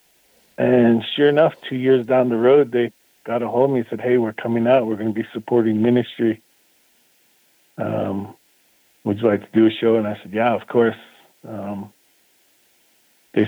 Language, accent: English, American